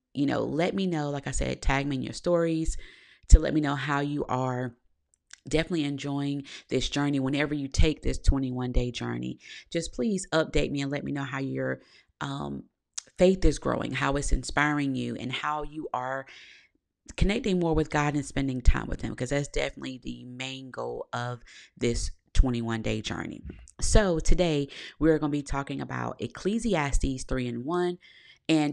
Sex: female